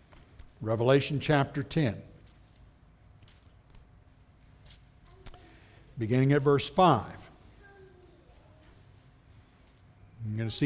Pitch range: 125-175 Hz